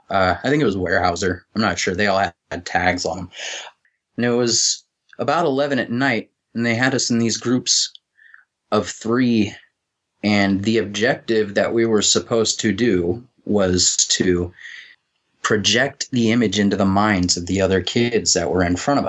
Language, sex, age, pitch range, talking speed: English, male, 30-49, 95-115 Hz, 180 wpm